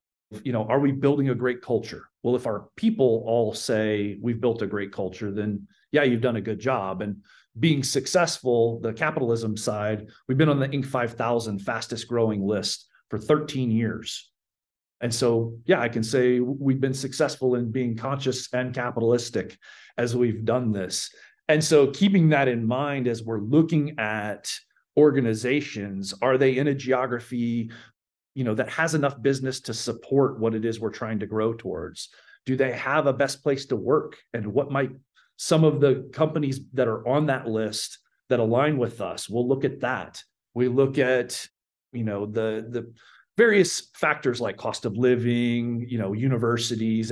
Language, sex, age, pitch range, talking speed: English, male, 40-59, 110-135 Hz, 175 wpm